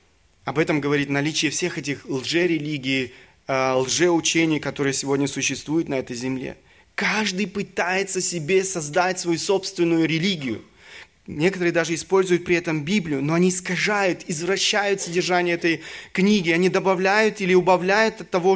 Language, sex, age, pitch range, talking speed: Russian, male, 20-39, 130-185 Hz, 130 wpm